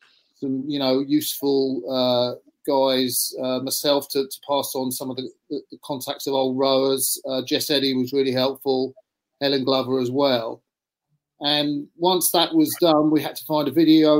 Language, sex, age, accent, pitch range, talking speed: English, male, 40-59, British, 135-155 Hz, 175 wpm